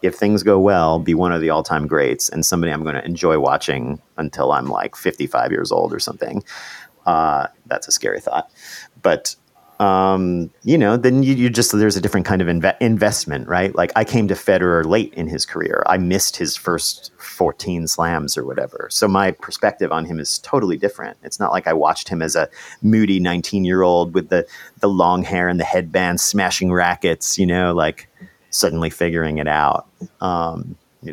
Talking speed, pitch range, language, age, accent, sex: 190 wpm, 85-105 Hz, English, 40-59, American, male